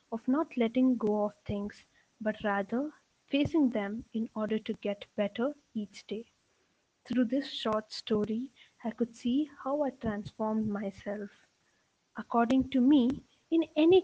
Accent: native